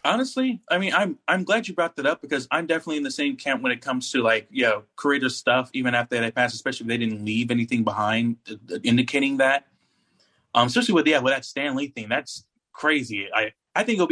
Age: 30-49